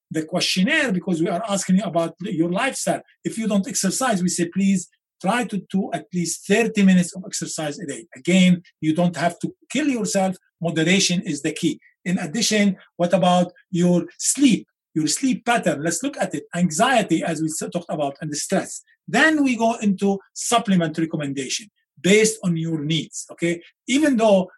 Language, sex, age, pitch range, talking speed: English, male, 50-69, 165-200 Hz, 180 wpm